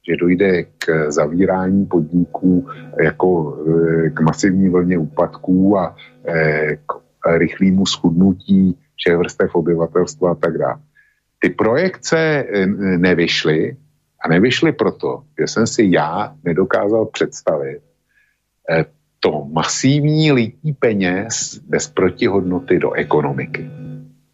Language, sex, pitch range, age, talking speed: Slovak, male, 85-100 Hz, 50-69, 100 wpm